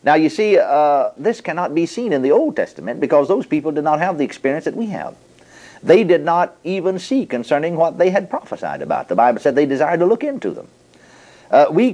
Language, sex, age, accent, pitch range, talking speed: English, male, 50-69, American, 150-205 Hz, 225 wpm